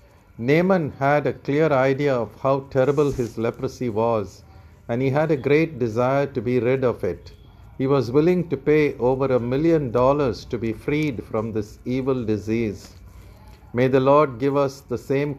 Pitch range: 110-145 Hz